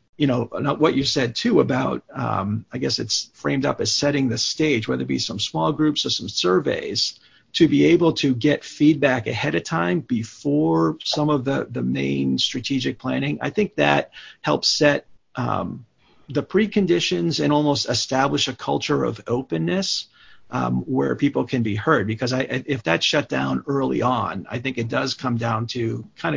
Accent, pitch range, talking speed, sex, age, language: American, 120-145 Hz, 185 wpm, male, 40-59, English